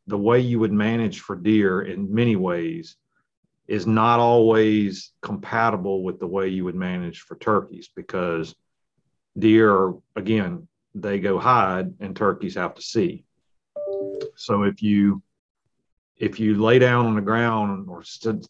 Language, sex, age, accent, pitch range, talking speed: English, male, 40-59, American, 100-115 Hz, 145 wpm